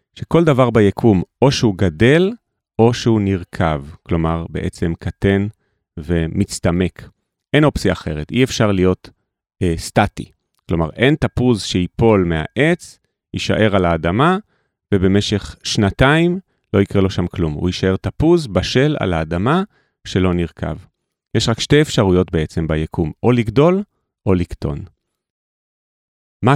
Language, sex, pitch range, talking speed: Hebrew, male, 90-125 Hz, 125 wpm